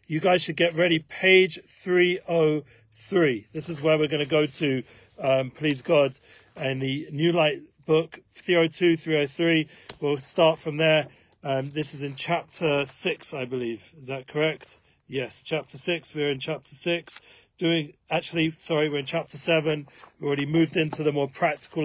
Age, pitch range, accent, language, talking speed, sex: 40-59, 140-160 Hz, British, English, 170 wpm, male